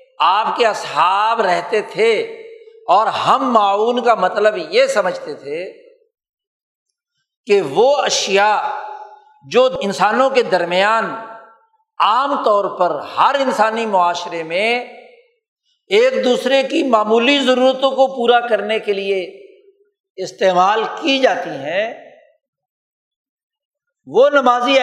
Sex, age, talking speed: male, 60-79, 105 wpm